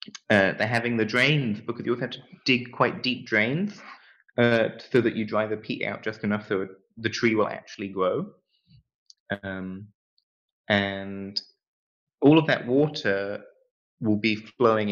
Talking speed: 155 wpm